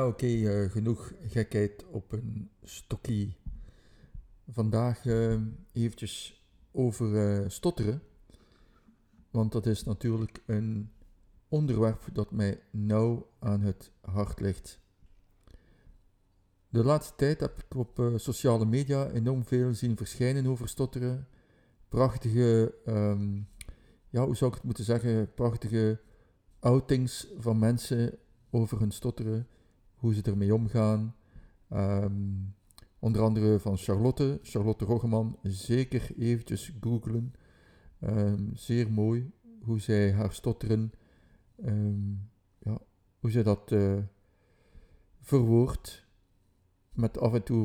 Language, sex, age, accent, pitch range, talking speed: Dutch, male, 50-69, Dutch, 100-120 Hz, 105 wpm